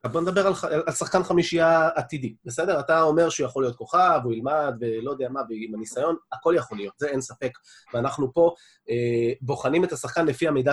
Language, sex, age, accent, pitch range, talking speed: Hebrew, male, 30-49, native, 125-170 Hz, 195 wpm